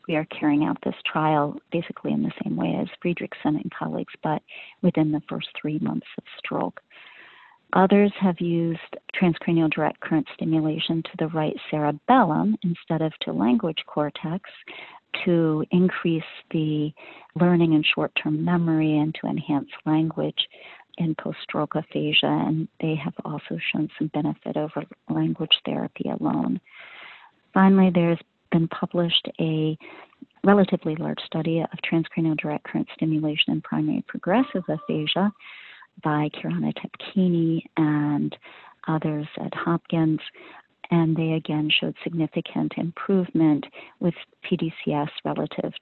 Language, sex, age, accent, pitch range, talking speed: English, female, 40-59, American, 155-185 Hz, 125 wpm